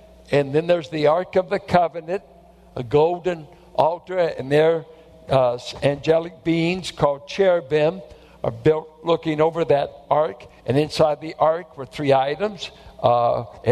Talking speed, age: 140 wpm, 60-79